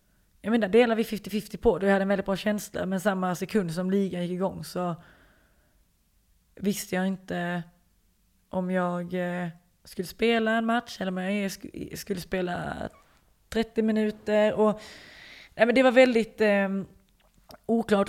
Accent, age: native, 20-39